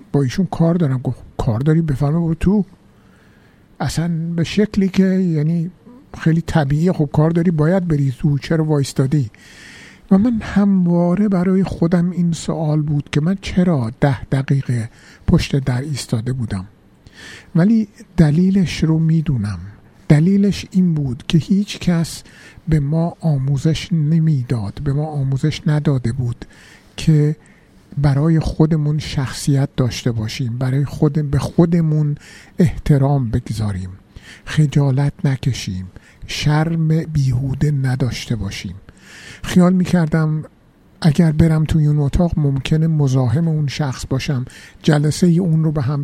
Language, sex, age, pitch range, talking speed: Persian, male, 50-69, 135-165 Hz, 125 wpm